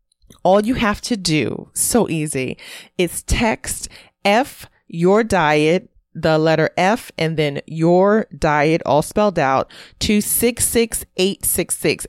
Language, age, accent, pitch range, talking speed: English, 30-49, American, 155-190 Hz, 120 wpm